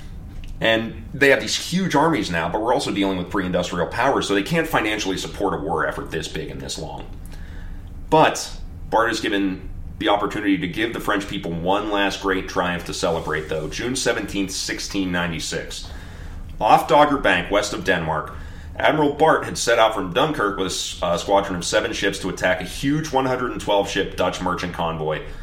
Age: 30-49